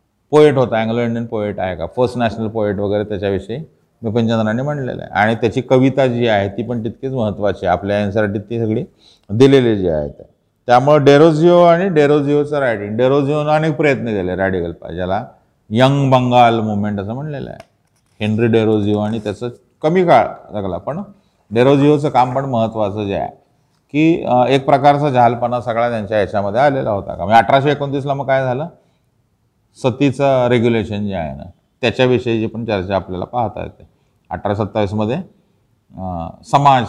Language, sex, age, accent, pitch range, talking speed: Marathi, male, 30-49, native, 105-135 Hz, 130 wpm